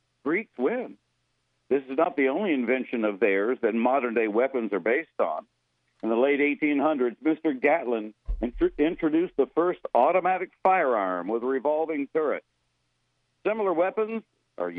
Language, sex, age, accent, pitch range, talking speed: English, male, 60-79, American, 110-180 Hz, 140 wpm